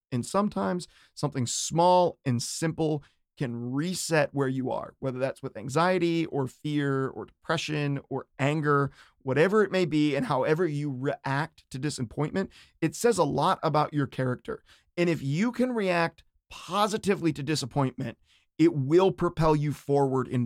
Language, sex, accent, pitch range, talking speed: English, male, American, 140-180 Hz, 155 wpm